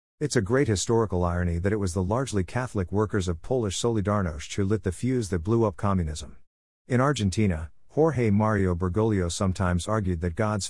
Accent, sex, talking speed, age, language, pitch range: American, male, 180 wpm, 50-69, English, 90-115 Hz